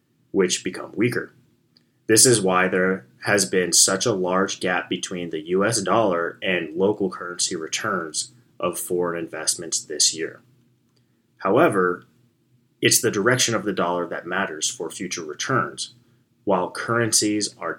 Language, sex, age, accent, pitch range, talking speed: English, male, 30-49, American, 95-120 Hz, 140 wpm